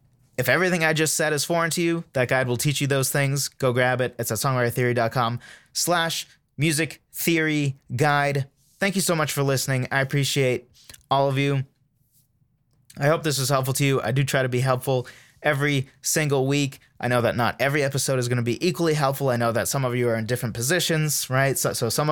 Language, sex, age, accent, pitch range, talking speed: English, male, 20-39, American, 120-150 Hz, 215 wpm